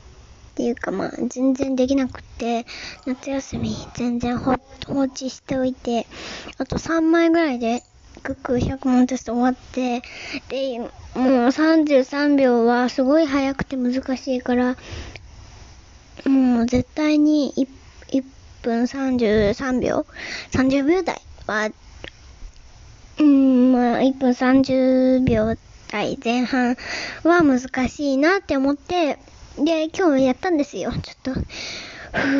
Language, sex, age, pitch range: Japanese, male, 20-39, 245-305 Hz